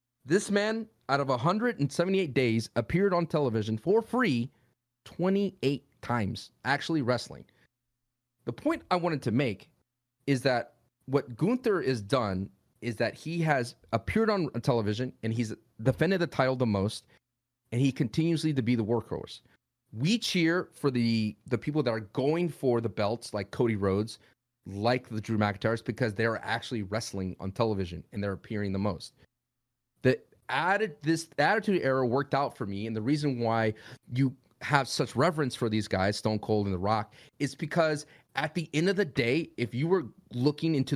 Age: 30-49